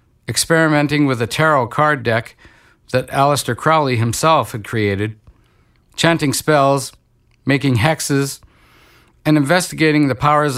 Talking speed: 115 wpm